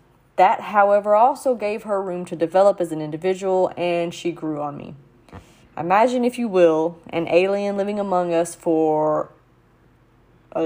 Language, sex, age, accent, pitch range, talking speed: English, female, 30-49, American, 165-205 Hz, 150 wpm